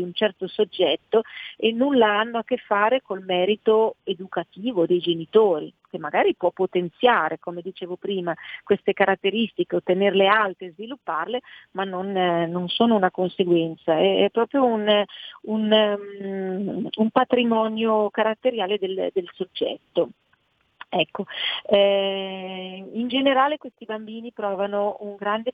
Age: 40-59